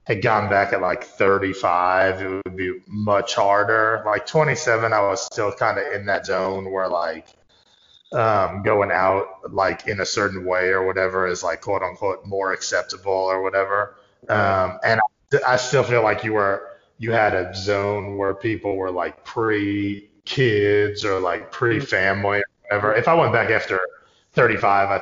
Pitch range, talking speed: 95-115 Hz, 170 wpm